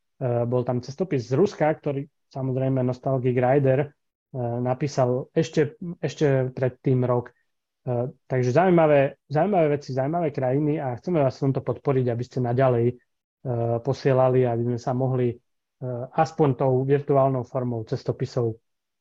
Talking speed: 125 wpm